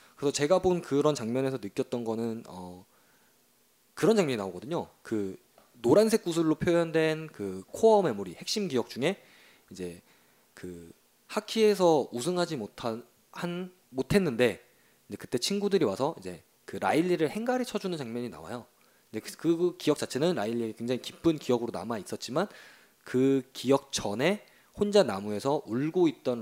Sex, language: male, Korean